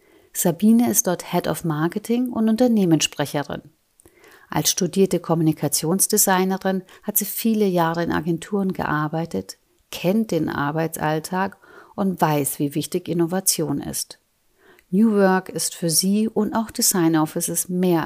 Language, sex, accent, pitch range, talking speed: German, female, German, 160-215 Hz, 125 wpm